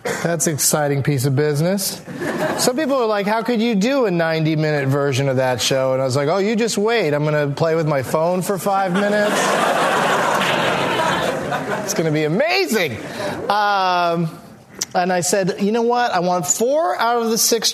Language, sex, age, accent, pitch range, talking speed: English, male, 30-49, American, 170-220 Hz, 195 wpm